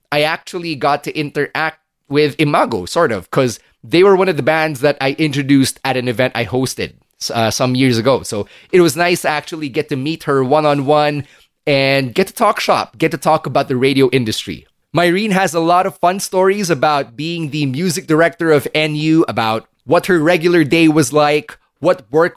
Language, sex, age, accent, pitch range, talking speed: English, male, 30-49, Filipino, 135-165 Hz, 200 wpm